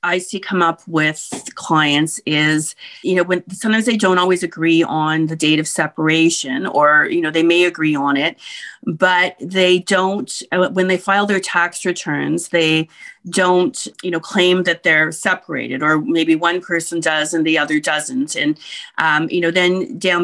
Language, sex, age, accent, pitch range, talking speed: English, female, 40-59, American, 165-195 Hz, 180 wpm